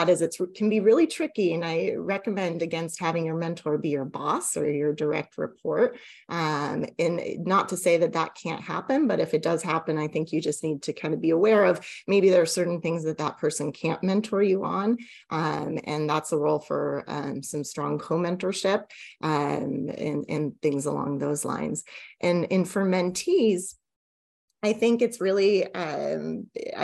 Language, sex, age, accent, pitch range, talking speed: English, female, 30-49, American, 160-185 Hz, 185 wpm